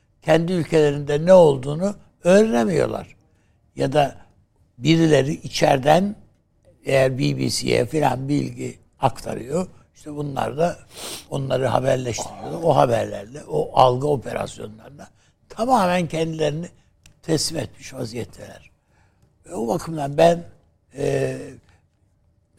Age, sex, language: 60-79, male, Turkish